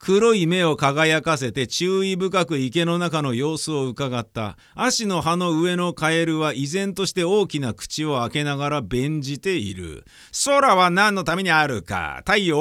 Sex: male